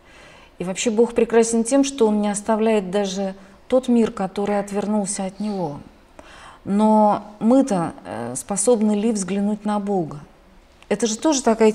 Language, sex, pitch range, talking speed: Russian, female, 195-235 Hz, 140 wpm